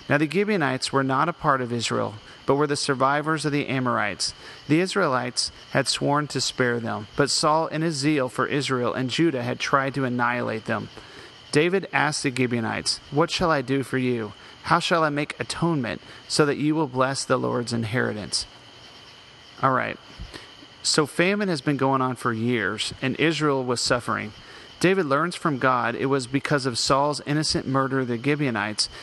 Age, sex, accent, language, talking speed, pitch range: 40-59, male, American, English, 180 wpm, 125-155 Hz